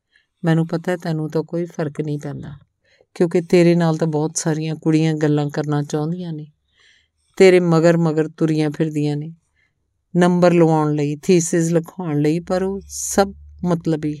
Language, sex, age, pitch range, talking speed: Punjabi, female, 50-69, 155-190 Hz, 150 wpm